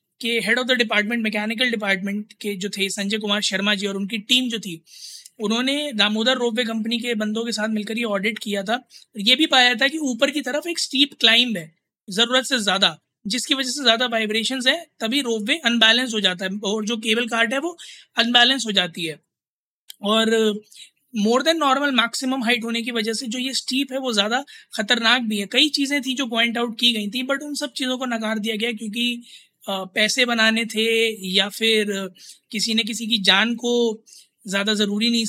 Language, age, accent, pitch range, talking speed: Hindi, 20-39, native, 210-245 Hz, 200 wpm